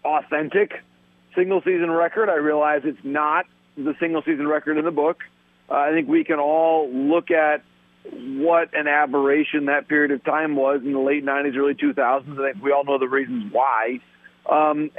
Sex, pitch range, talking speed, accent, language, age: male, 140-170 Hz, 175 wpm, American, English, 40-59